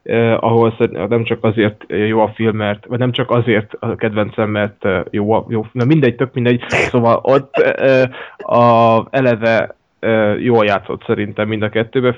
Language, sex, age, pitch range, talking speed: Hungarian, male, 20-39, 110-120 Hz, 175 wpm